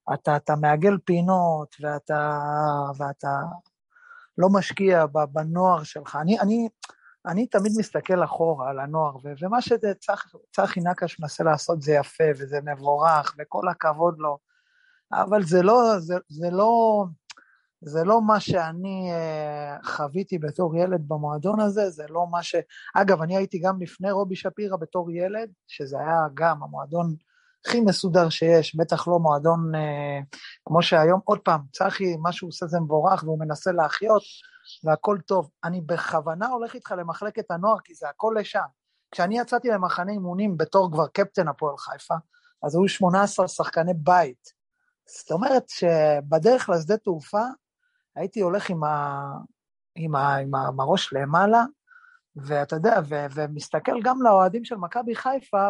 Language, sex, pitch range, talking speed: Hebrew, male, 155-210 Hz, 140 wpm